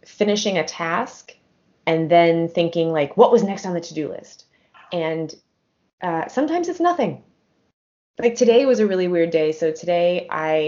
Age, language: 20-39, English